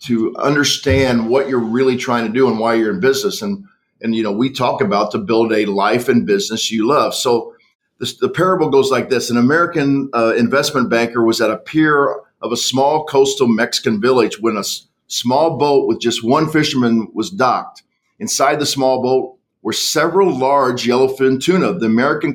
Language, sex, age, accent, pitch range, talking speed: English, male, 50-69, American, 120-155 Hz, 190 wpm